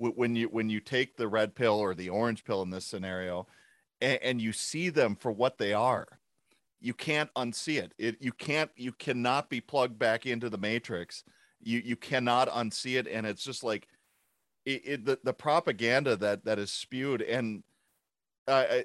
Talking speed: 190 wpm